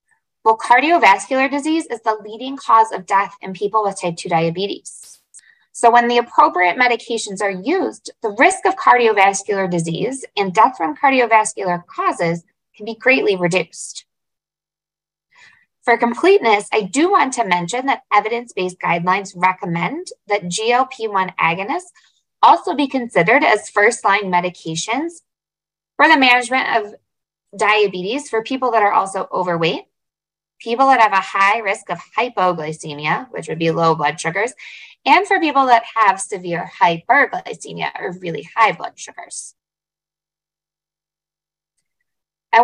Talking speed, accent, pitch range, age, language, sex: 130 wpm, American, 180-255 Hz, 20-39, English, female